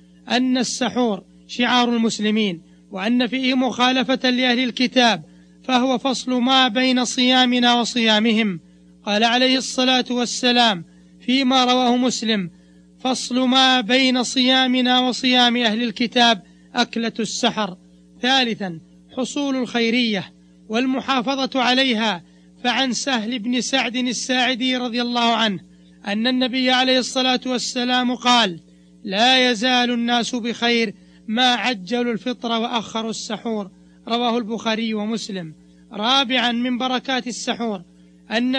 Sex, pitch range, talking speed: male, 215-255 Hz, 105 wpm